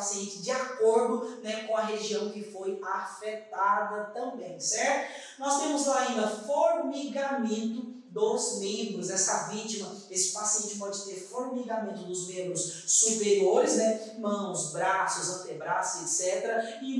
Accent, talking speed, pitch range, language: Brazilian, 125 wpm, 190-240 Hz, Portuguese